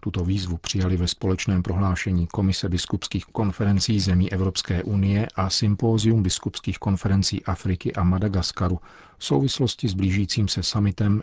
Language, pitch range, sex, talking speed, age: Czech, 90-105 Hz, male, 135 wpm, 40-59